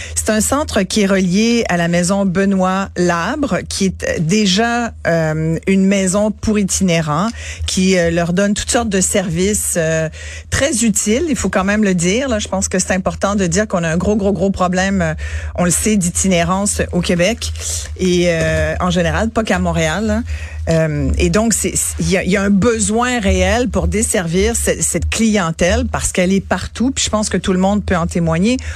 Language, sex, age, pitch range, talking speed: French, female, 40-59, 165-205 Hz, 195 wpm